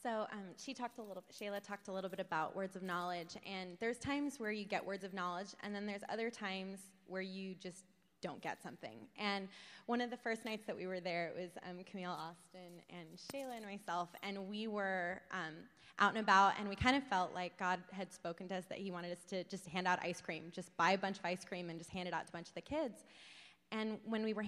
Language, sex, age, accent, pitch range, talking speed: English, female, 20-39, American, 185-220 Hz, 255 wpm